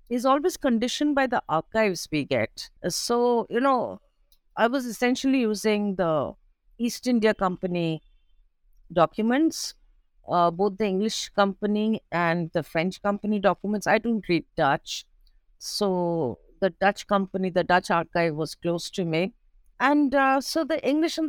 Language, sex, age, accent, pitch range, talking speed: English, female, 50-69, Indian, 185-245 Hz, 145 wpm